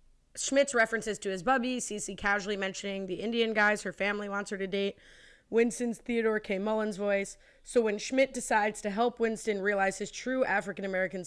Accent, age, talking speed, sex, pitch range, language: American, 20-39, 175 wpm, female, 195-230 Hz, English